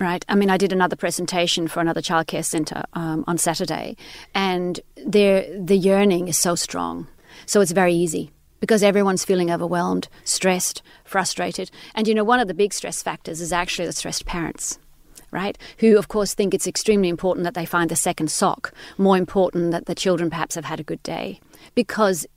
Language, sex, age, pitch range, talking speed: English, female, 30-49, 170-195 Hz, 190 wpm